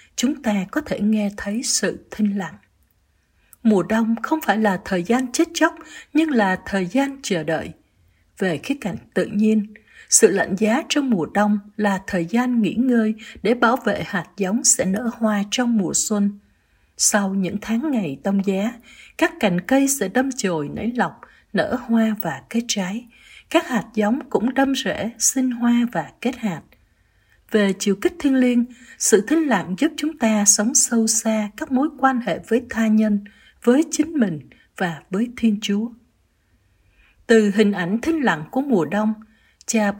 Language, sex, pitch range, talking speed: Vietnamese, female, 200-255 Hz, 175 wpm